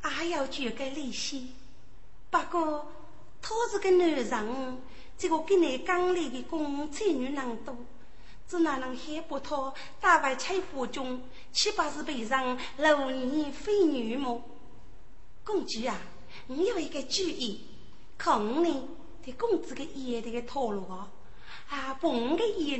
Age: 30-49